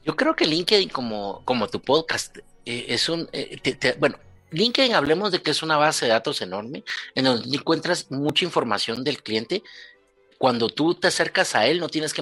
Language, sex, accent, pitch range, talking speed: Spanish, male, Mexican, 125-165 Hz, 200 wpm